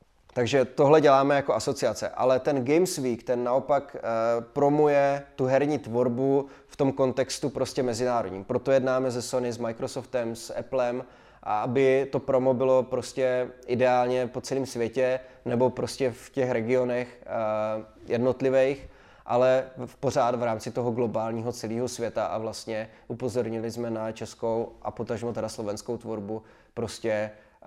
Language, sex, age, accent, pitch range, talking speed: Czech, male, 20-39, native, 115-130 Hz, 135 wpm